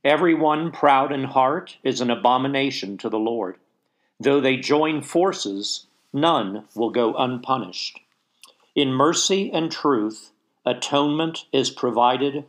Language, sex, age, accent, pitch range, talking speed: English, male, 50-69, American, 115-145 Hz, 120 wpm